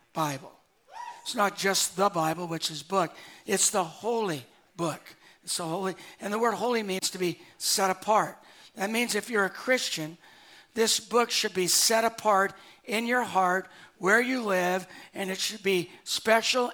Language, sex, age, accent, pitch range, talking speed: English, male, 60-79, American, 170-215 Hz, 170 wpm